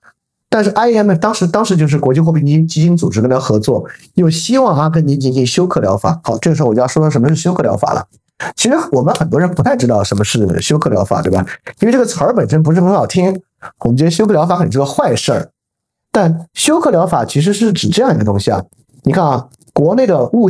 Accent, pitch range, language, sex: native, 140-185 Hz, Chinese, male